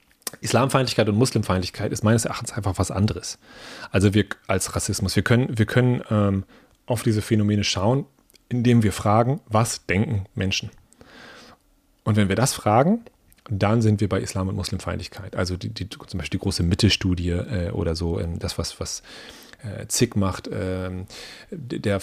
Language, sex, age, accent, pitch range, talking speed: German, male, 30-49, German, 95-115 Hz, 165 wpm